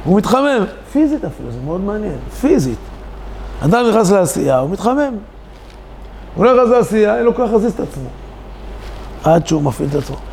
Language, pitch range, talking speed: Hebrew, 140-210 Hz, 165 wpm